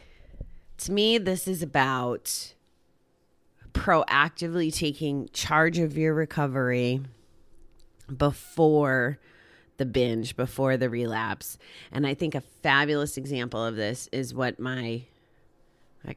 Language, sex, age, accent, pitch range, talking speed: English, female, 30-49, American, 120-145 Hz, 110 wpm